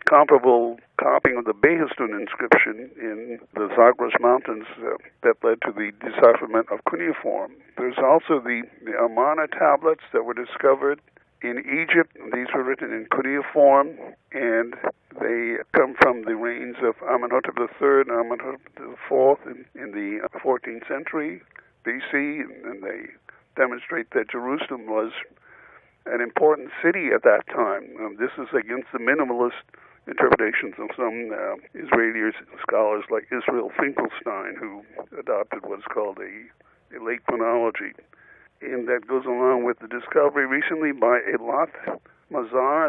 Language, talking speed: English, 135 wpm